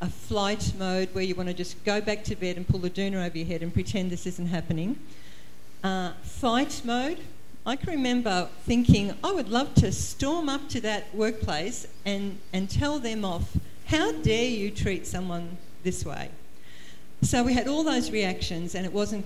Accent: Australian